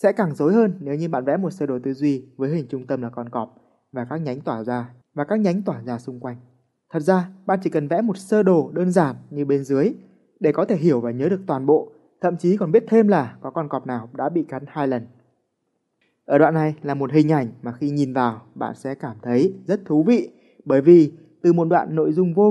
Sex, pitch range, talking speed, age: male, 130-180 Hz, 255 wpm, 20-39